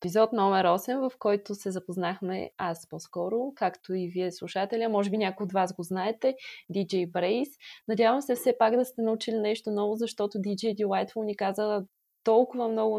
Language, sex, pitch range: Bulgarian, female, 190-230 Hz